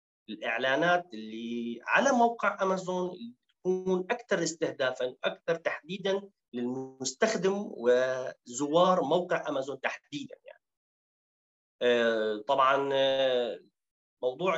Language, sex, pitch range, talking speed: Arabic, male, 130-205 Hz, 80 wpm